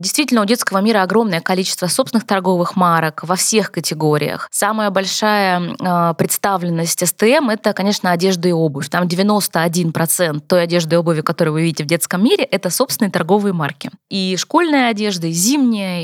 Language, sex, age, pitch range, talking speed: Russian, female, 20-39, 175-220 Hz, 155 wpm